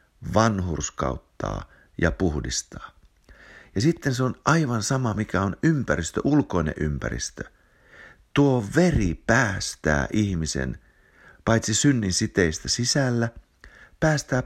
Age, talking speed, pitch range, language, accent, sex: 50-69, 95 wpm, 80-125 Hz, Finnish, native, male